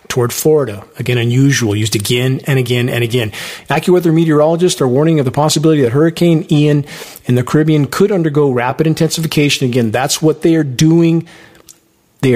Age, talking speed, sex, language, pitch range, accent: 40-59, 165 wpm, male, English, 125-155 Hz, American